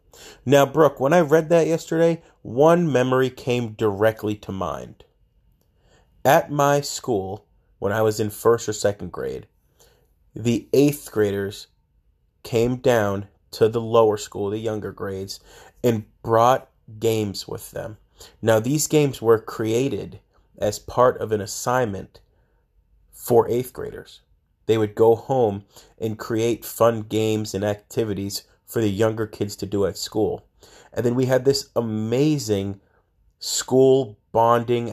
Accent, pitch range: American, 100-120 Hz